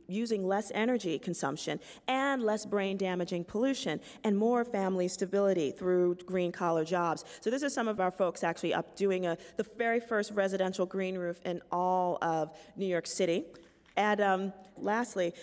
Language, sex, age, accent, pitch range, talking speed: English, female, 40-59, American, 180-215 Hz, 160 wpm